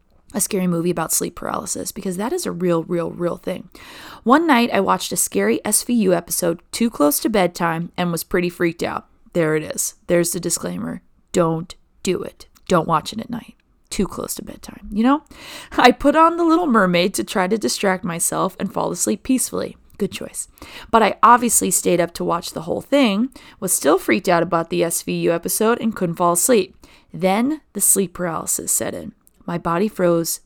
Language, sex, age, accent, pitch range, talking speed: English, female, 20-39, American, 170-235 Hz, 195 wpm